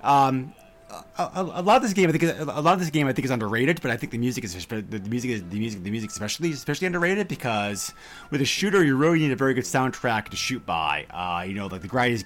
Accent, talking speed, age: American, 280 wpm, 30-49